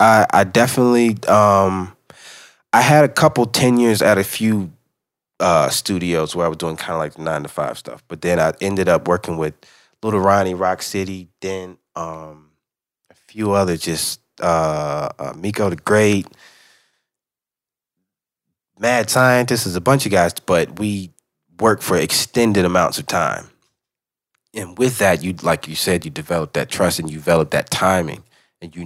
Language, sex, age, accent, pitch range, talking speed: English, male, 30-49, American, 85-110 Hz, 165 wpm